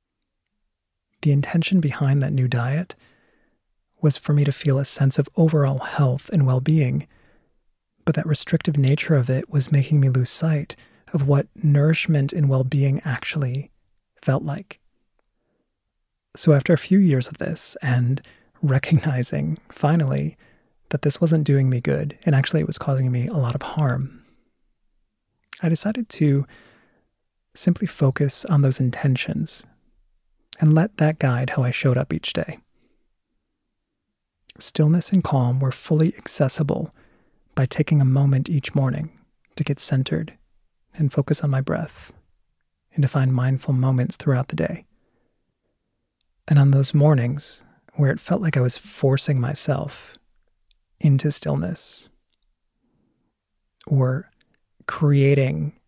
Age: 30-49